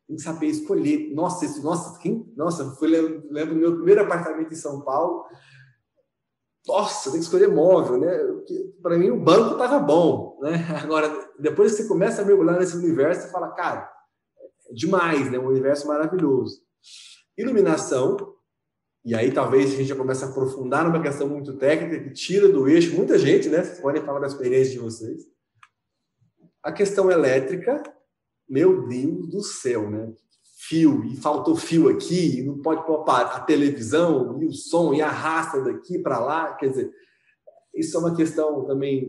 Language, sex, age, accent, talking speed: Portuguese, male, 20-39, Brazilian, 165 wpm